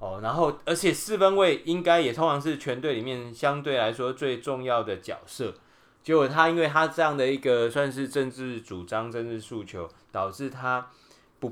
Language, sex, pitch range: Chinese, male, 115-145 Hz